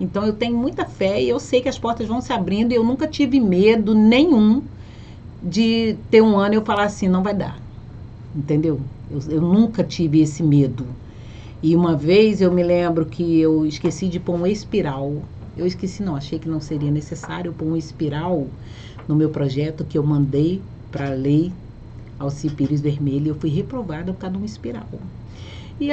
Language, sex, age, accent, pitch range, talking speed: Portuguese, female, 50-69, Brazilian, 150-215 Hz, 190 wpm